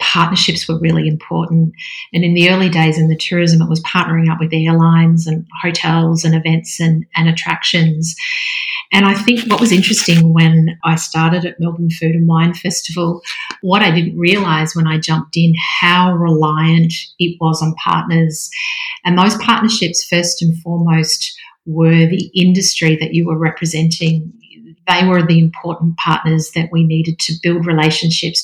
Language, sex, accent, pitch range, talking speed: English, female, Australian, 160-180 Hz, 165 wpm